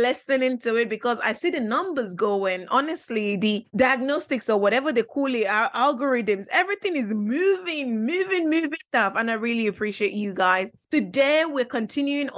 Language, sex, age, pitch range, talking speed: English, female, 20-39, 215-295 Hz, 165 wpm